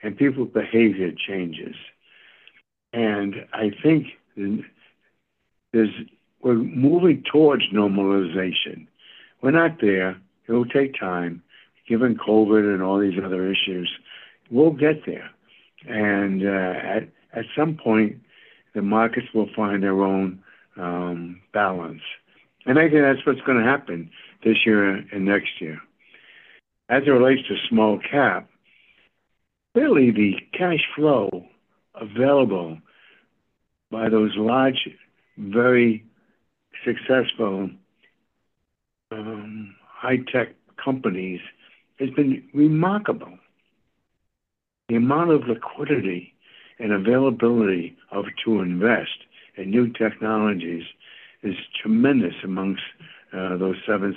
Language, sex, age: English, male, 60-79